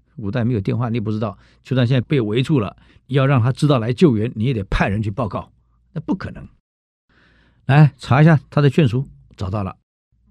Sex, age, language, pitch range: male, 50-69, Chinese, 95-130 Hz